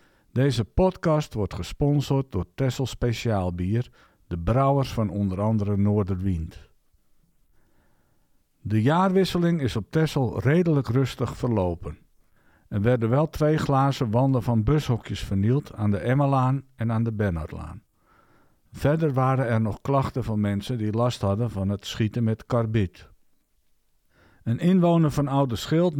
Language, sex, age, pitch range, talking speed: Dutch, male, 50-69, 100-140 Hz, 135 wpm